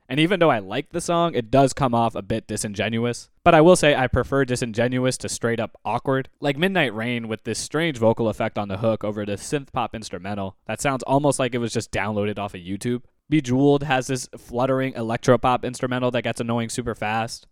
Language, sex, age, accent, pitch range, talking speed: English, male, 20-39, American, 110-130 Hz, 215 wpm